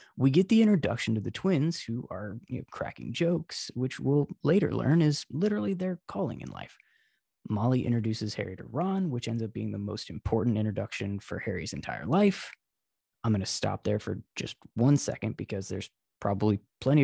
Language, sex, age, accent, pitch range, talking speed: English, male, 20-39, American, 105-140 Hz, 180 wpm